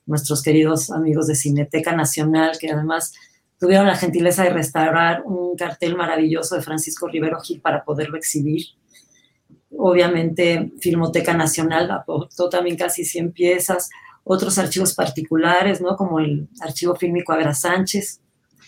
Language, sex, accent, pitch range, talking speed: Spanish, female, Mexican, 155-180 Hz, 130 wpm